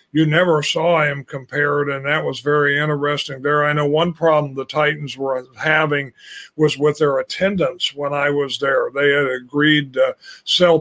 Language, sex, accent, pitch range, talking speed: English, male, American, 150-170 Hz, 180 wpm